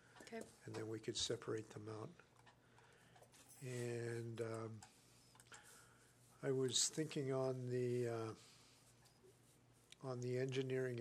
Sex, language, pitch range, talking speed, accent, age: male, English, 120-135 Hz, 100 wpm, American, 50-69